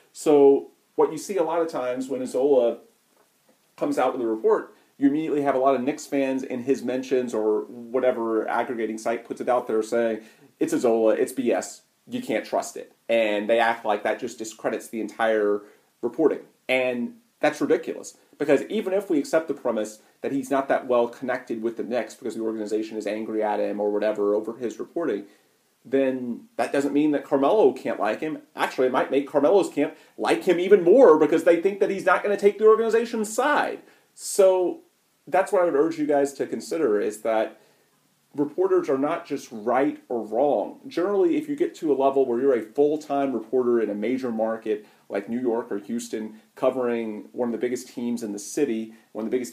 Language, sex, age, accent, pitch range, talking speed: English, male, 30-49, American, 110-180 Hz, 205 wpm